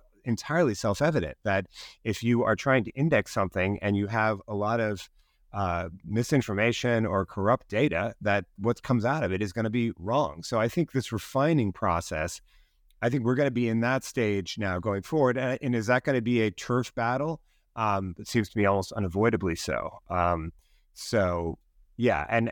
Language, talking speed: English, 190 wpm